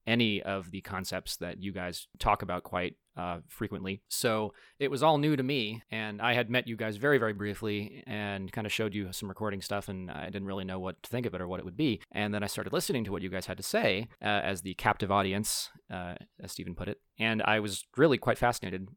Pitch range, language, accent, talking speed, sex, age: 95-115 Hz, English, American, 250 wpm, male, 30-49